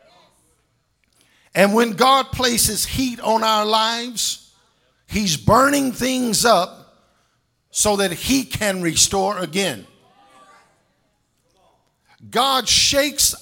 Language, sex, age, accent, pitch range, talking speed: English, male, 50-69, American, 190-250 Hz, 90 wpm